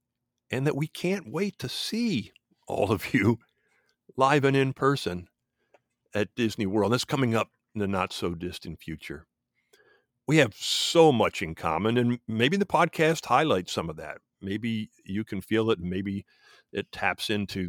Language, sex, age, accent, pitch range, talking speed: English, male, 50-69, American, 105-150 Hz, 165 wpm